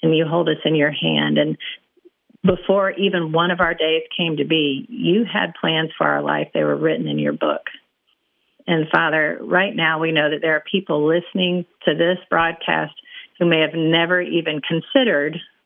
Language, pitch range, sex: English, 155-180 Hz, female